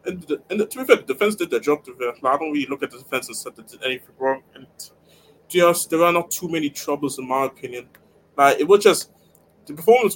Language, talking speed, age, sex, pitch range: English, 265 wpm, 20-39, male, 130-165 Hz